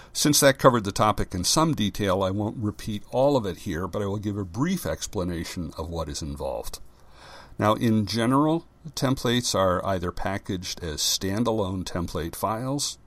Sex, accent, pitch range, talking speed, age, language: male, American, 90-110 Hz, 170 wpm, 60-79, English